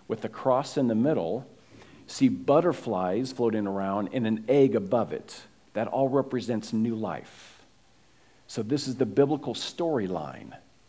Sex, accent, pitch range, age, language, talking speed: male, American, 110-140 Hz, 50-69, English, 145 wpm